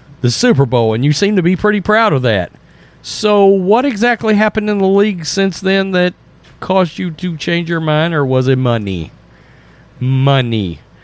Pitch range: 140-210 Hz